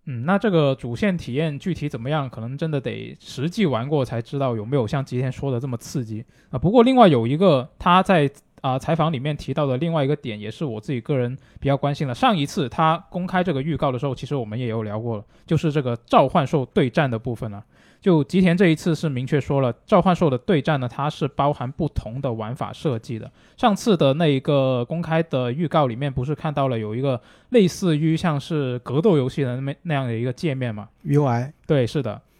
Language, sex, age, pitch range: Chinese, male, 20-39, 125-165 Hz